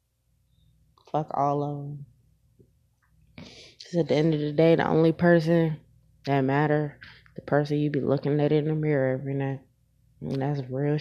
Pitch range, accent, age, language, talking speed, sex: 135-155 Hz, American, 20-39, English, 170 wpm, female